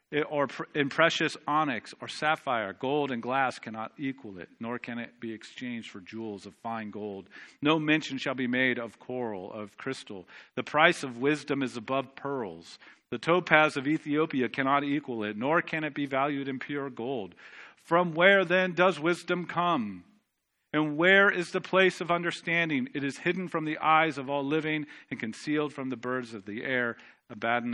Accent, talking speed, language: American, 180 wpm, English